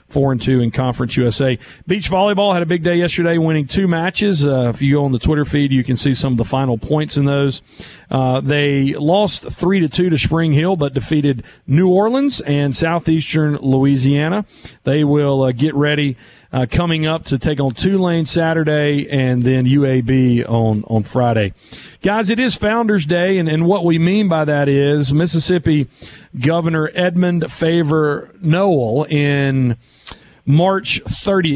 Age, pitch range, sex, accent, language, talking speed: 40-59, 135-170 Hz, male, American, English, 170 wpm